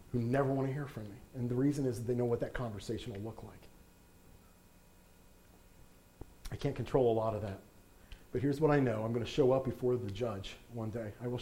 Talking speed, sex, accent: 230 wpm, male, American